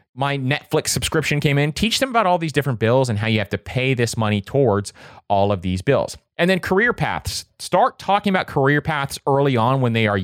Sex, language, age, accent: male, English, 30-49, American